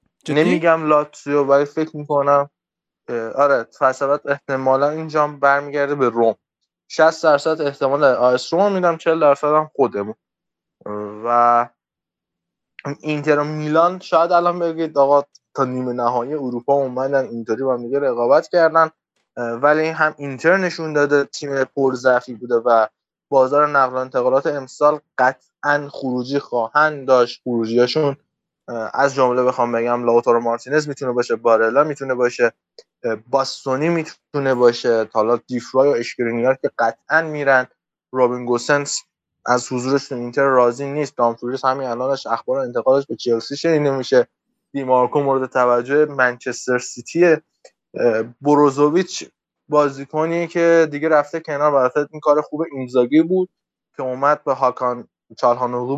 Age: 20-39